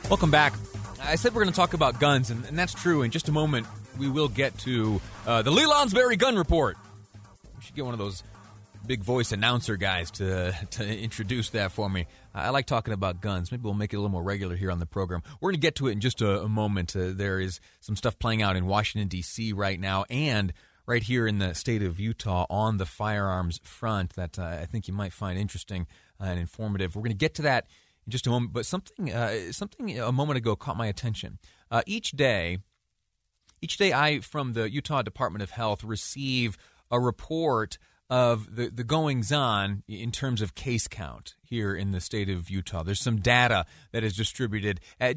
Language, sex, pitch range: English, male, 100-130 Hz